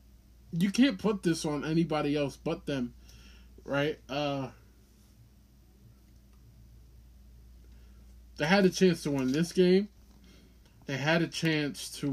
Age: 20-39